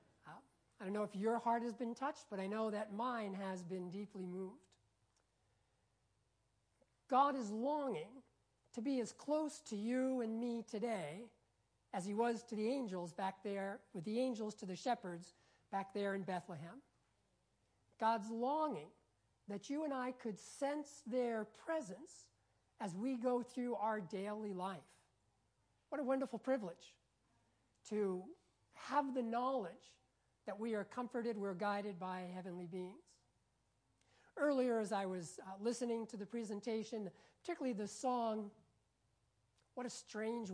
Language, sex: English, male